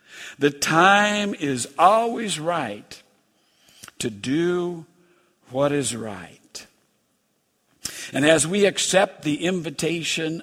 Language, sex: English, male